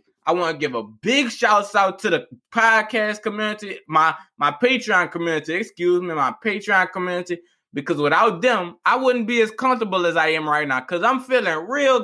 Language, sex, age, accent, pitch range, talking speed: English, male, 20-39, American, 180-235 Hz, 190 wpm